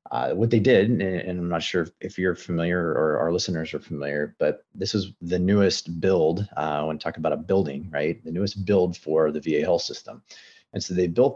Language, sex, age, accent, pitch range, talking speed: English, male, 30-49, American, 85-105 Hz, 230 wpm